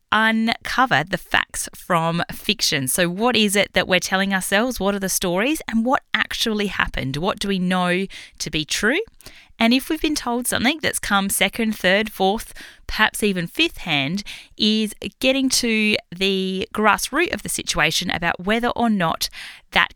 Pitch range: 180-235 Hz